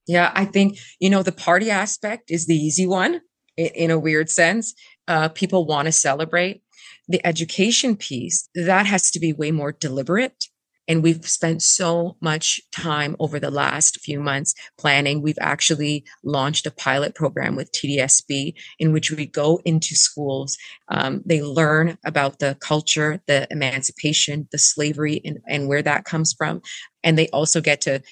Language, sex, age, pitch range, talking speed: English, female, 30-49, 150-175 Hz, 165 wpm